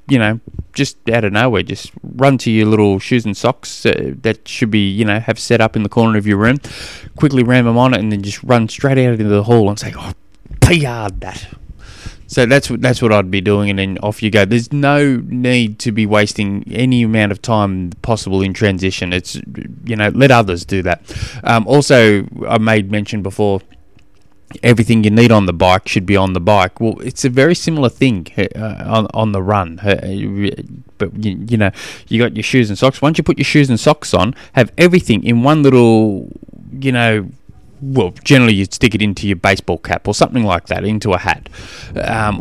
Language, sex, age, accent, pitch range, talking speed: English, male, 20-39, Australian, 100-125 Hz, 210 wpm